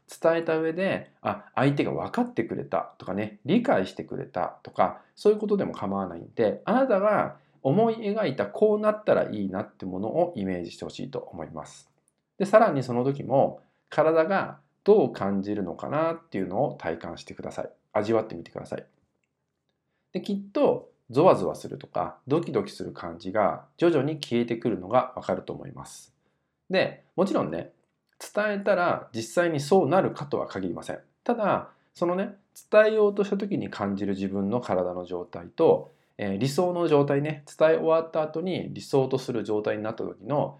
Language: Japanese